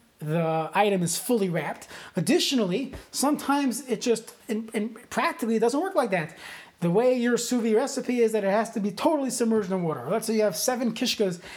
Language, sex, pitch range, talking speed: English, male, 190-245 Hz, 200 wpm